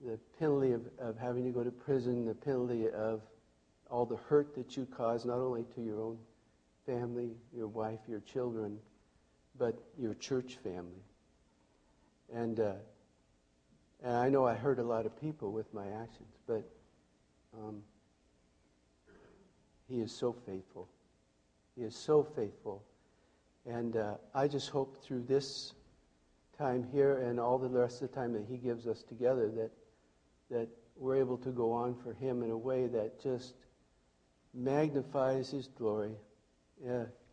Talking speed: 150 wpm